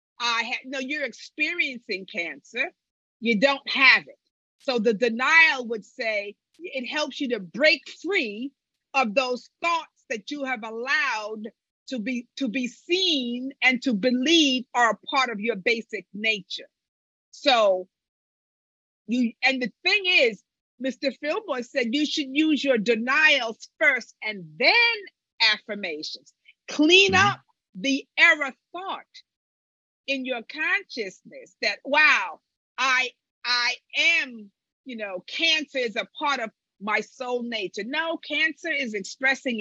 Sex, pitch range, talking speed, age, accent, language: female, 220-290 Hz, 135 wpm, 50-69, American, English